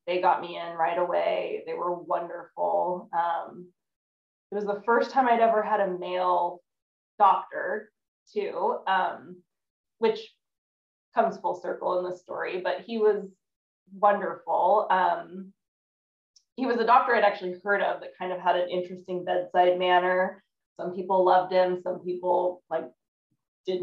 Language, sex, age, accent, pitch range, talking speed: English, female, 20-39, American, 180-210 Hz, 150 wpm